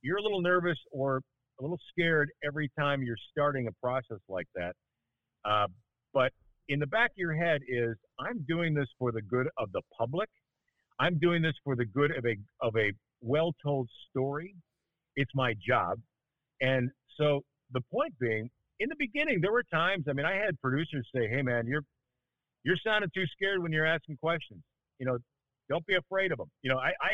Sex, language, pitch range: male, English, 125-165 Hz